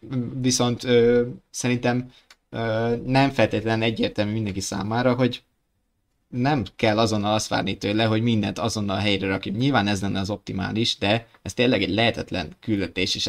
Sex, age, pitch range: male, 20-39, 95-115 Hz